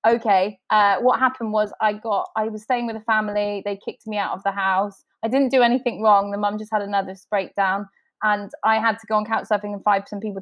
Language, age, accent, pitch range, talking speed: English, 20-39, British, 210-285 Hz, 255 wpm